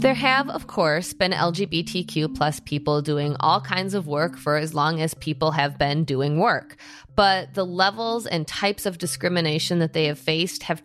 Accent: American